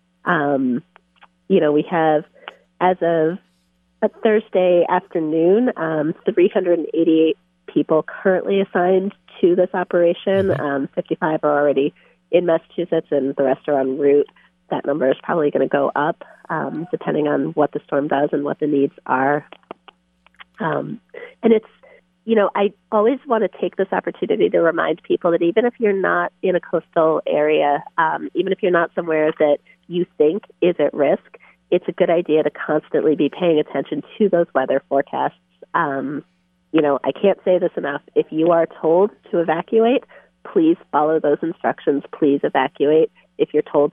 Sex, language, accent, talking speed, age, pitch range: female, English, American, 170 wpm, 30-49, 140-180 Hz